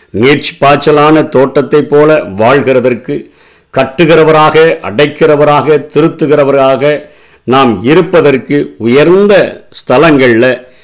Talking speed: 60 wpm